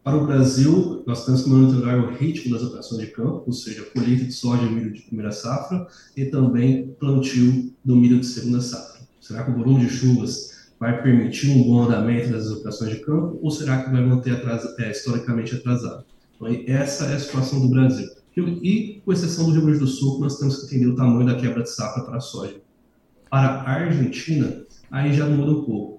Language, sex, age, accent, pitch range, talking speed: Portuguese, male, 20-39, Brazilian, 125-140 Hz, 210 wpm